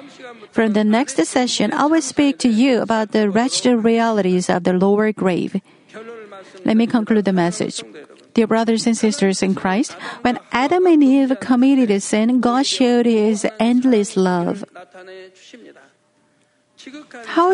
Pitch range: 200-245 Hz